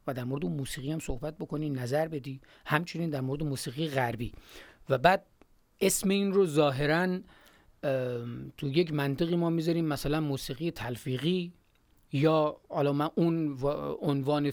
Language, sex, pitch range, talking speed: Persian, male, 135-165 Hz, 140 wpm